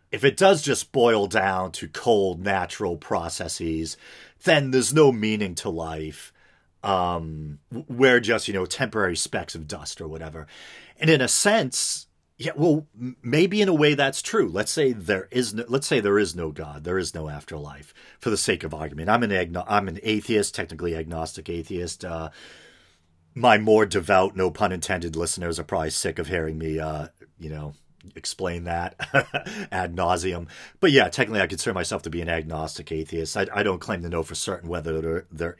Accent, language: American, English